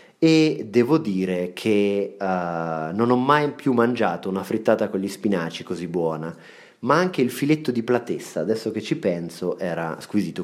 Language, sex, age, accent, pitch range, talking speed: Italian, male, 30-49, native, 90-115 Hz, 165 wpm